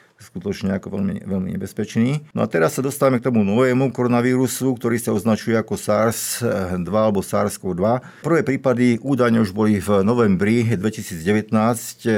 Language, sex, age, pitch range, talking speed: Slovak, male, 50-69, 100-115 Hz, 150 wpm